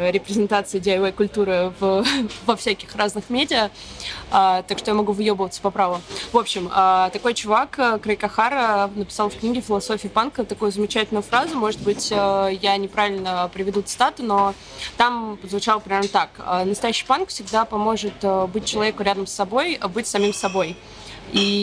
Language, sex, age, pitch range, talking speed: Russian, female, 20-39, 200-240 Hz, 155 wpm